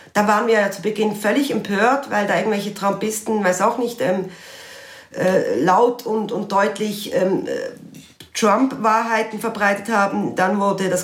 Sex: female